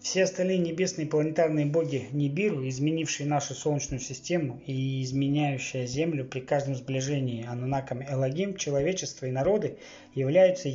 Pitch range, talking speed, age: 130-155 Hz, 125 wpm, 20-39